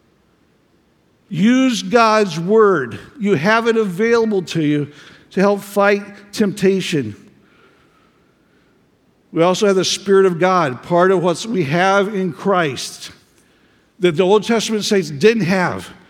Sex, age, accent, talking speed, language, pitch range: male, 50-69, American, 125 wpm, English, 180-220 Hz